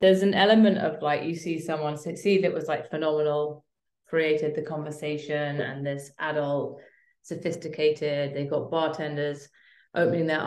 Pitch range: 145-165 Hz